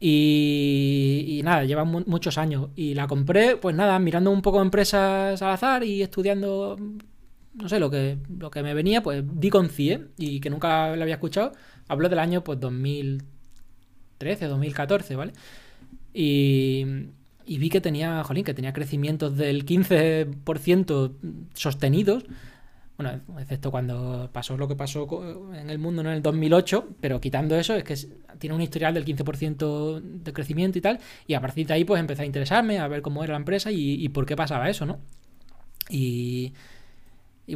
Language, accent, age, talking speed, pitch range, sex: Spanish, Spanish, 20-39, 175 wpm, 140-180 Hz, male